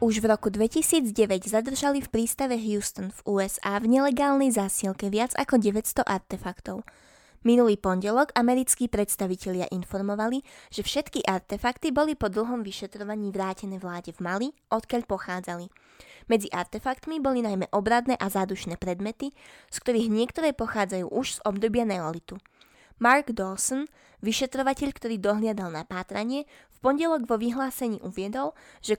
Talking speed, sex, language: 130 wpm, female, Slovak